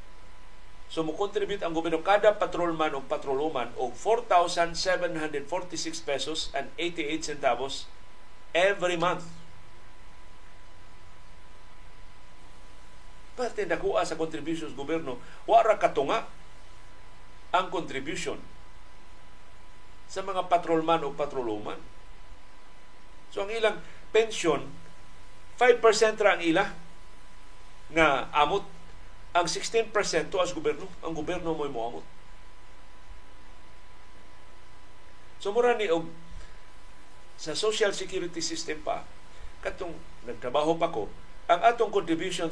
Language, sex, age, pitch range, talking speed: Filipino, male, 50-69, 120-175 Hz, 95 wpm